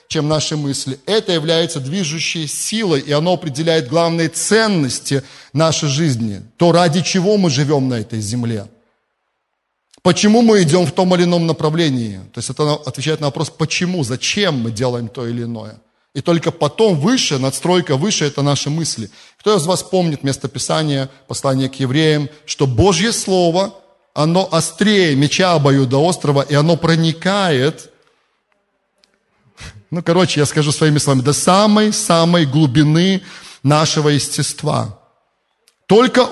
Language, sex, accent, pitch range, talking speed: Russian, male, native, 140-185 Hz, 140 wpm